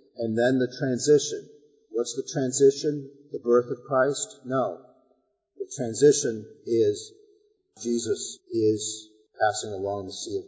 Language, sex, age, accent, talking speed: English, male, 50-69, American, 125 wpm